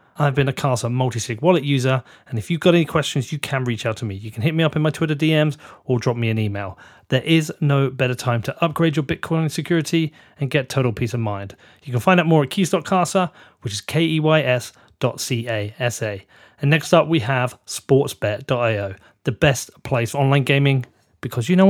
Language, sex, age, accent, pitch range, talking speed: English, male, 30-49, British, 120-155 Hz, 210 wpm